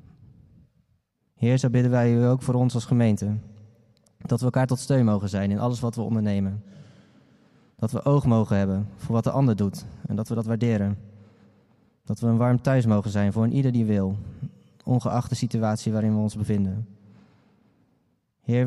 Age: 20-39